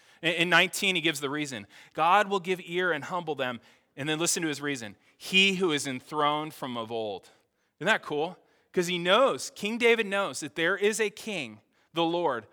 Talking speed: 200 wpm